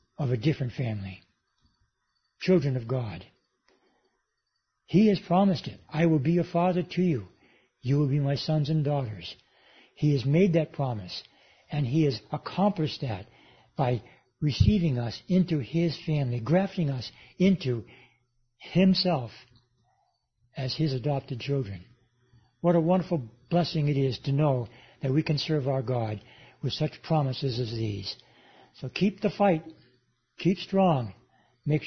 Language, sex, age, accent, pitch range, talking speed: English, male, 60-79, American, 125-175 Hz, 140 wpm